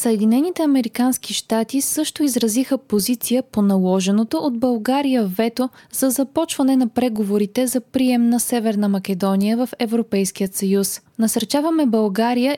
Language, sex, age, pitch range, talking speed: Bulgarian, female, 20-39, 215-265 Hz, 120 wpm